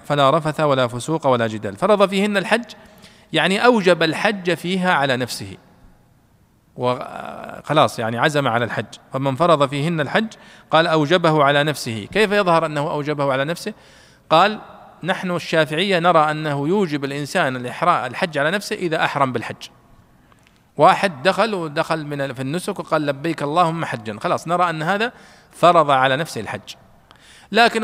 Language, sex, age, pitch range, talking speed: Arabic, male, 40-59, 135-180 Hz, 140 wpm